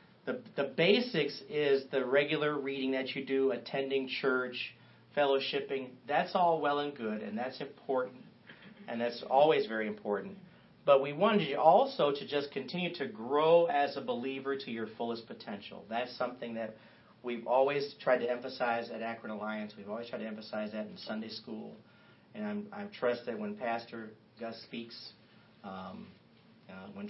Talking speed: 165 wpm